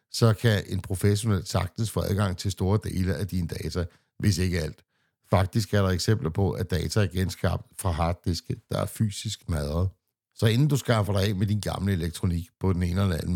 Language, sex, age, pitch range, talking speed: Danish, male, 60-79, 90-105 Hz, 205 wpm